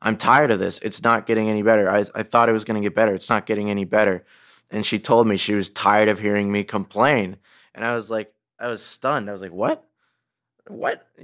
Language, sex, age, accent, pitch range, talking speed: English, male, 20-39, American, 105-120 Hz, 240 wpm